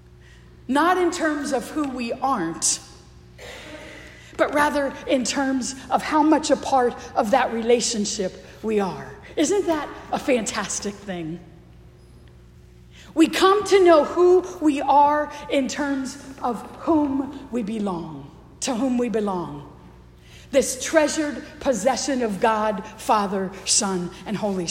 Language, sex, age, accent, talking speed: English, female, 50-69, American, 125 wpm